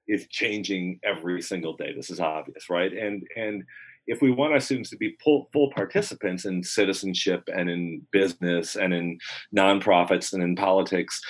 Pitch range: 85-105 Hz